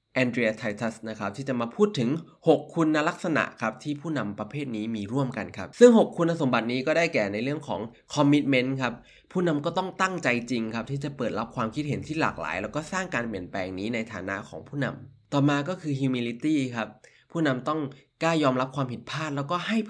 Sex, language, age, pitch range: male, Thai, 20-39, 110-150 Hz